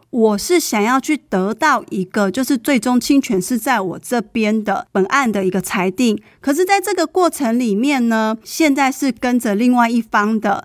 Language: Chinese